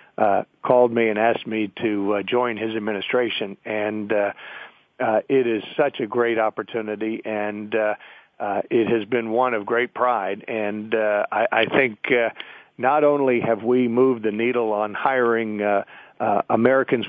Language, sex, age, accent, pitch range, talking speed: English, male, 50-69, American, 110-125 Hz, 170 wpm